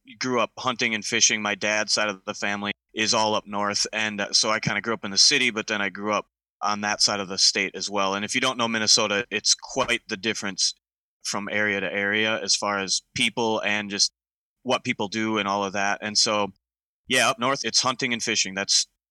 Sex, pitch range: male, 95-115 Hz